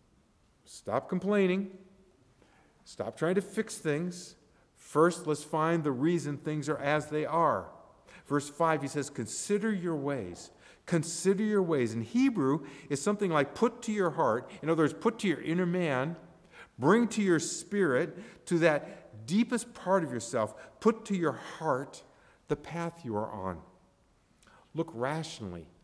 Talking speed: 150 wpm